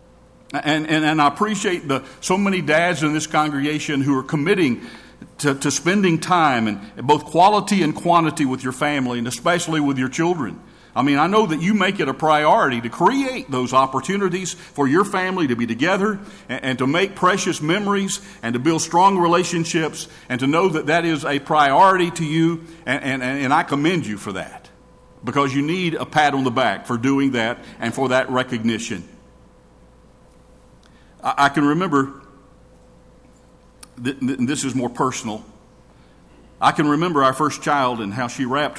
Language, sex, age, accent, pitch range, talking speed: English, male, 50-69, American, 125-165 Hz, 175 wpm